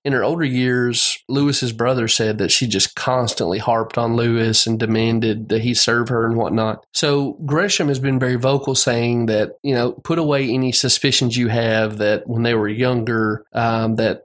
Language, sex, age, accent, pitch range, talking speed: English, male, 30-49, American, 115-135 Hz, 190 wpm